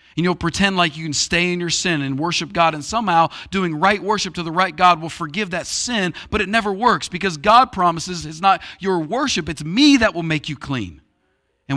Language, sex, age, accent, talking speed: English, male, 40-59, American, 230 wpm